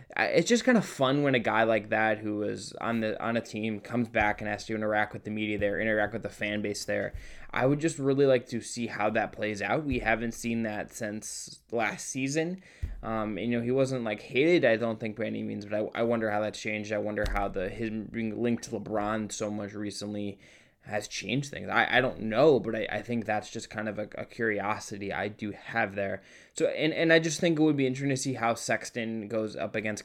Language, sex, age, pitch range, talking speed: English, male, 20-39, 105-120 Hz, 245 wpm